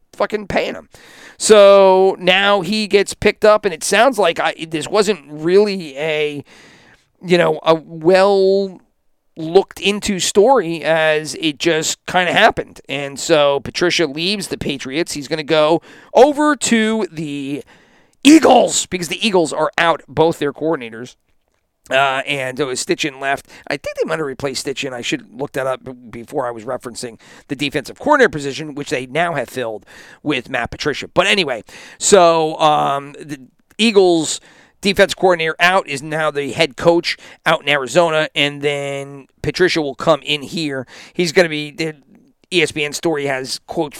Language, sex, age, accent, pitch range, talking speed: English, male, 40-59, American, 140-180 Hz, 160 wpm